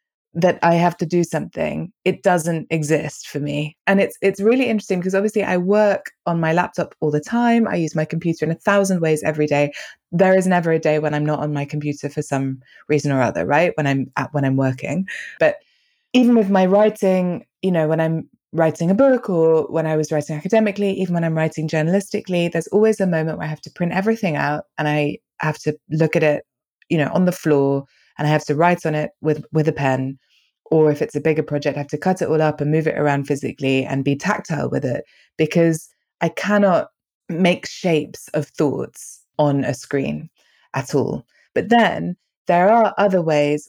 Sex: female